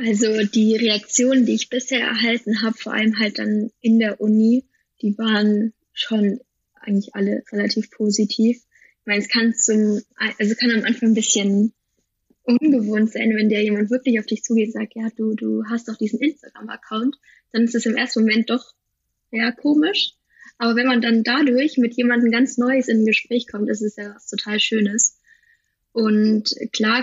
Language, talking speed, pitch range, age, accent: German, 180 wpm, 210-235 Hz, 10-29, German